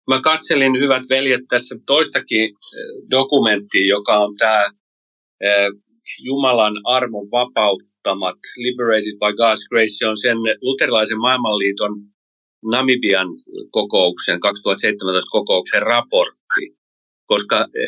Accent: native